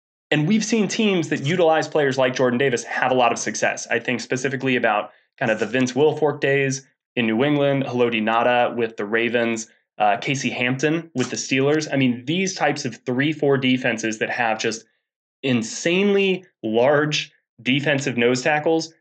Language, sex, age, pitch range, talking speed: English, male, 20-39, 120-155 Hz, 175 wpm